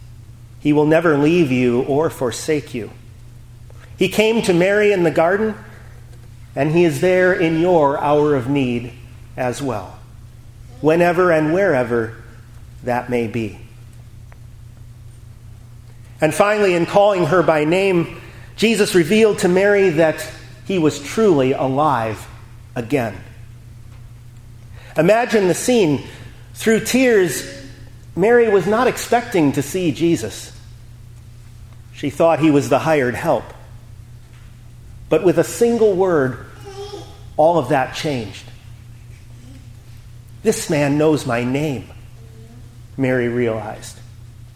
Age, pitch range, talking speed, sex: 40-59, 115-165 Hz, 115 wpm, male